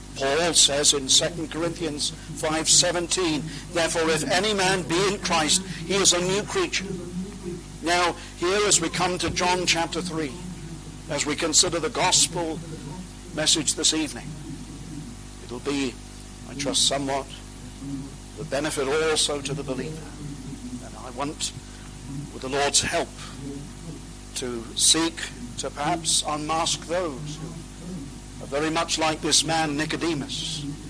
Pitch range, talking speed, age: 140-170 Hz, 130 wpm, 50-69